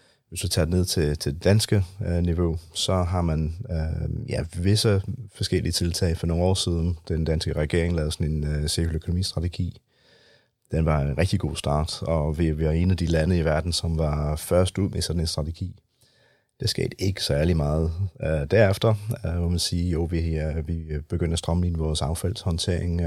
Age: 30-49